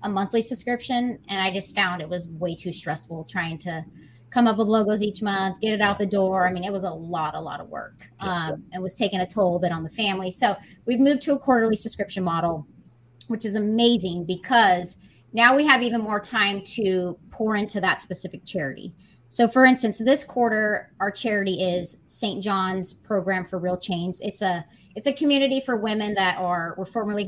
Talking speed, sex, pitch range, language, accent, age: 210 wpm, female, 180-220 Hz, English, American, 30-49